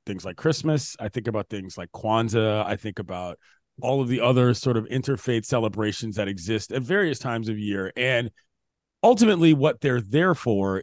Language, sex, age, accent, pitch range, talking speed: English, male, 40-59, American, 120-155 Hz, 185 wpm